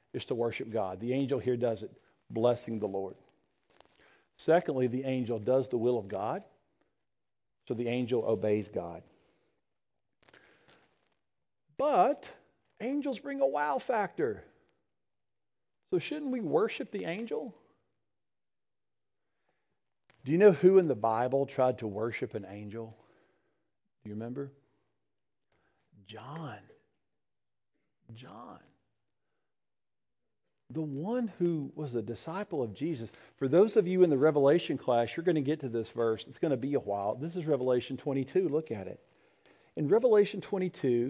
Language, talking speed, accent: English, 135 wpm, American